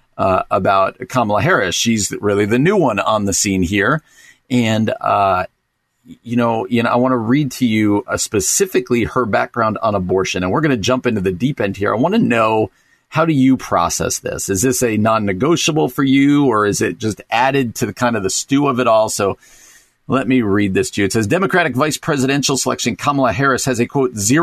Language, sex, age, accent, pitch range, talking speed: English, male, 40-59, American, 110-135 Hz, 215 wpm